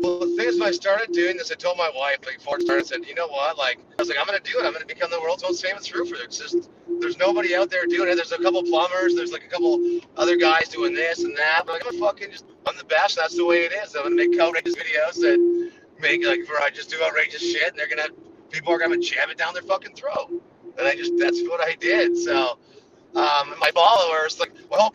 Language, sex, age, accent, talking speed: English, male, 30-49, American, 285 wpm